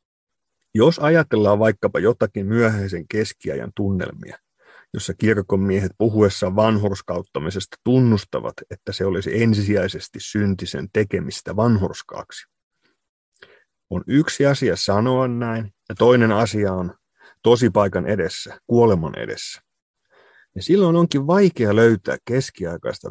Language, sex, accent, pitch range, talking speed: Finnish, male, native, 100-125 Hz, 100 wpm